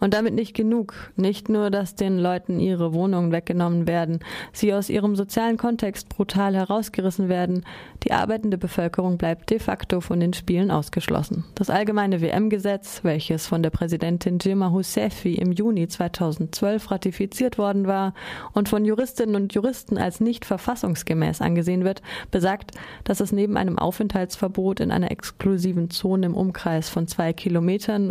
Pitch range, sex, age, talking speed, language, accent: 170-205 Hz, female, 20-39, 150 wpm, German, German